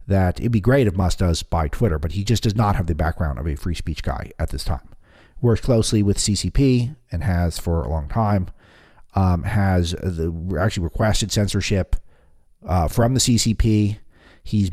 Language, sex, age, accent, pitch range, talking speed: English, male, 40-59, American, 85-110 Hz, 185 wpm